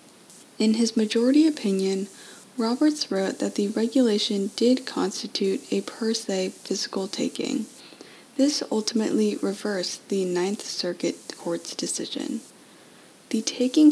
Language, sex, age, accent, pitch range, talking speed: English, female, 10-29, American, 190-245 Hz, 110 wpm